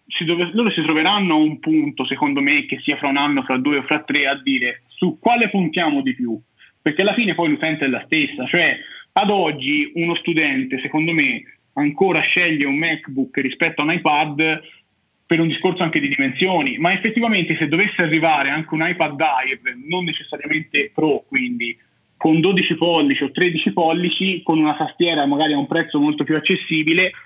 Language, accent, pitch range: Italian, native, 145-190 Hz